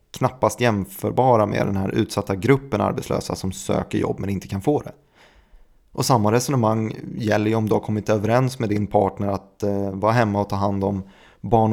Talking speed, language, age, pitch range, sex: 195 wpm, Swedish, 30-49, 100-125 Hz, male